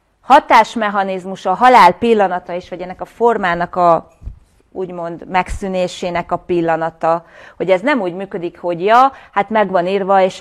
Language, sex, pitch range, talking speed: Hungarian, female, 165-200 Hz, 145 wpm